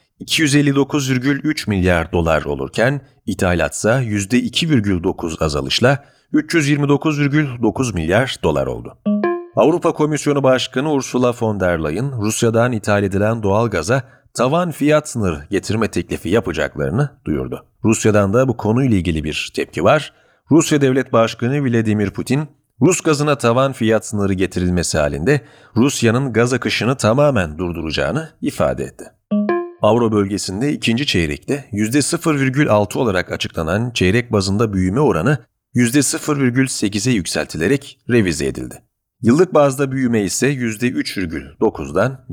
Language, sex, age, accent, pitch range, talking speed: Turkish, male, 40-59, native, 100-140 Hz, 110 wpm